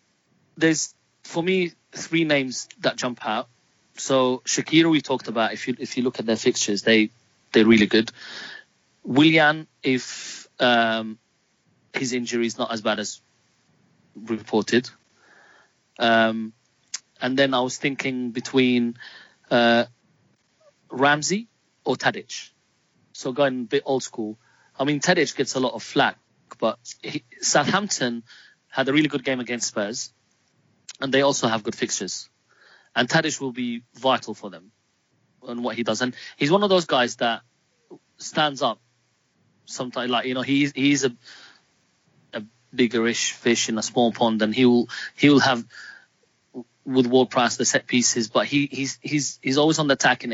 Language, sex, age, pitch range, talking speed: English, male, 30-49, 115-140 Hz, 155 wpm